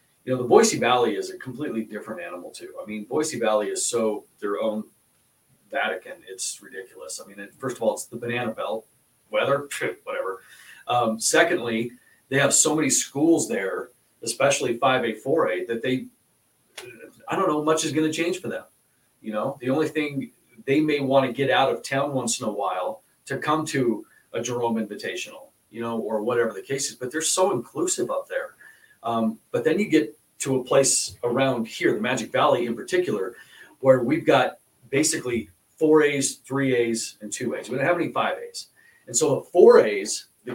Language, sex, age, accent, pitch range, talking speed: English, male, 40-59, American, 115-170 Hz, 190 wpm